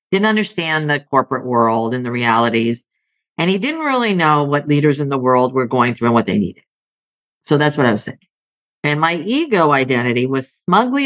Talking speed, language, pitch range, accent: 200 wpm, English, 120-155 Hz, American